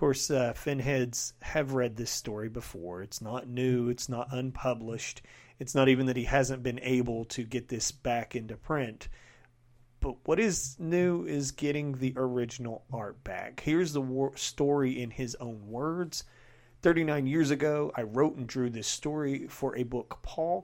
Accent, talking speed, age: American, 170 wpm, 40-59